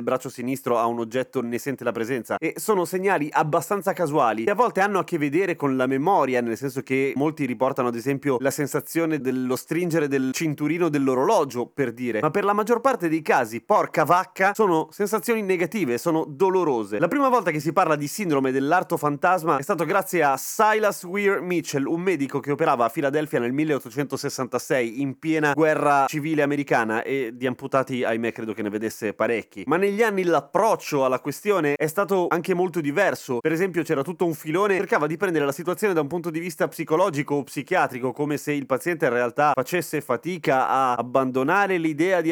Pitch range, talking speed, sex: 130-170 Hz, 195 wpm, male